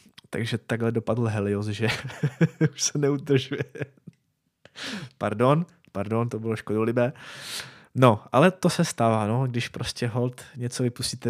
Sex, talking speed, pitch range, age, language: male, 125 wpm, 115-130 Hz, 20-39, Czech